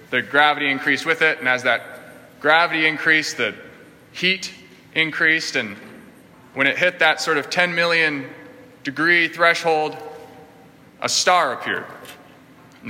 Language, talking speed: English, 130 wpm